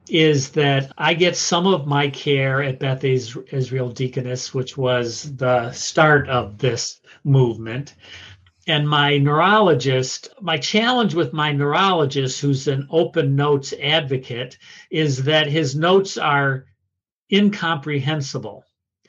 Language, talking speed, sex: English, 120 wpm, male